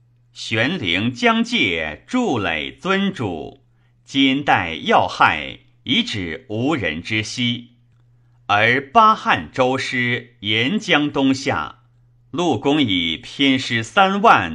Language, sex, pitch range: Chinese, male, 120-140 Hz